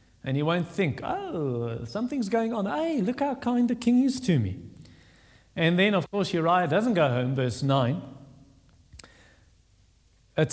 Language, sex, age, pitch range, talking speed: English, male, 40-59, 150-220 Hz, 160 wpm